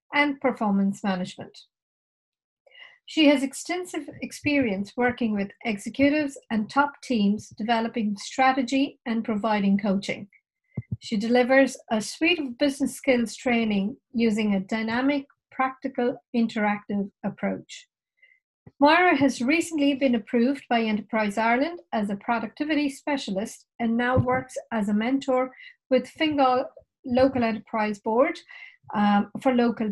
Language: English